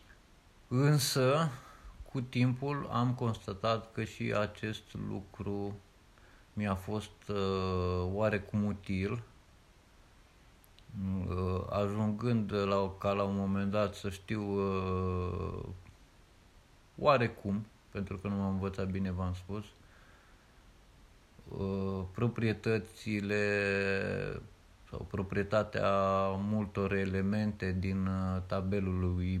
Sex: male